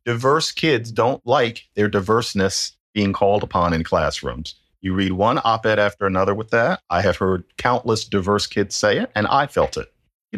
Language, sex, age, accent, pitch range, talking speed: English, male, 50-69, American, 95-135 Hz, 190 wpm